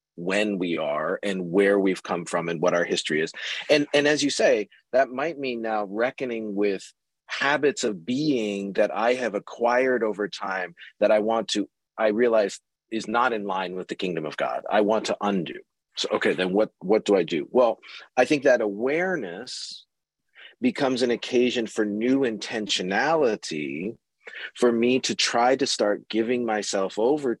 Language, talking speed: English, 175 wpm